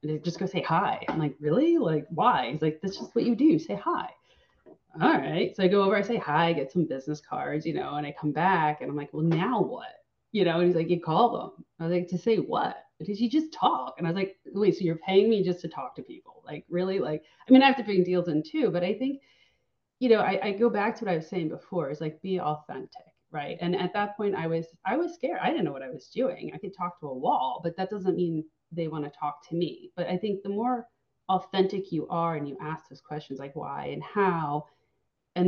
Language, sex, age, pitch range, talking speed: English, female, 30-49, 160-205 Hz, 265 wpm